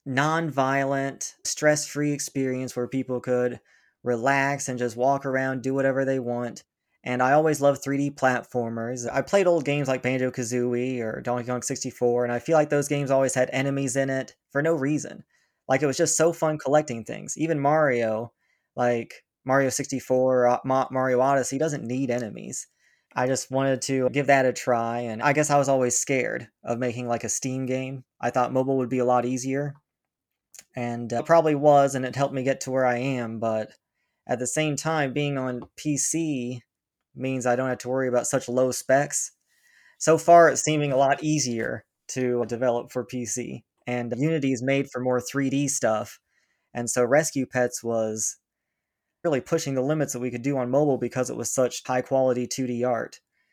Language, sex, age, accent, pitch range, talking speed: English, male, 20-39, American, 125-140 Hz, 190 wpm